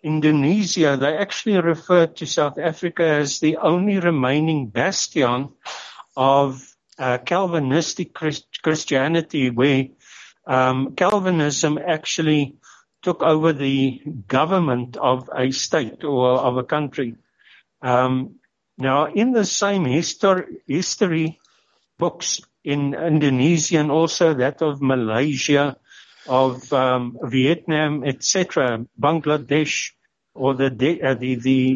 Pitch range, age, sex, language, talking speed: 130-165 Hz, 60-79, male, English, 105 wpm